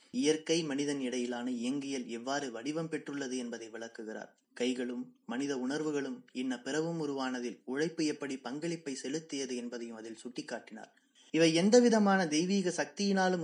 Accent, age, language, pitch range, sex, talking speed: native, 20-39, Tamil, 125-160 Hz, male, 115 wpm